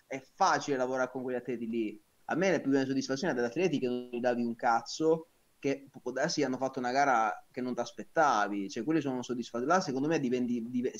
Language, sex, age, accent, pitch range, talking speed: Italian, male, 30-49, native, 125-150 Hz, 220 wpm